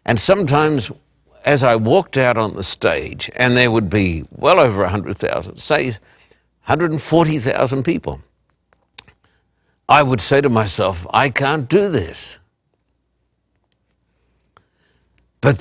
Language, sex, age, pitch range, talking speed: English, male, 60-79, 110-145 Hz, 110 wpm